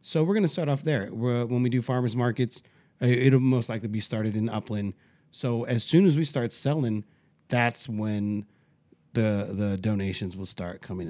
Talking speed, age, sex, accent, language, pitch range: 190 wpm, 30-49, male, American, English, 105-140 Hz